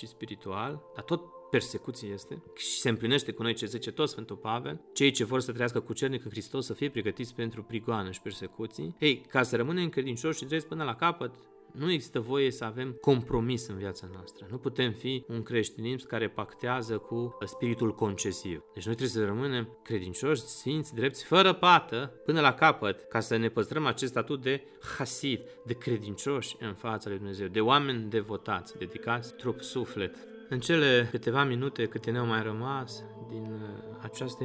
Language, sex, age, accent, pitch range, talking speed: Romanian, male, 30-49, native, 110-140 Hz, 180 wpm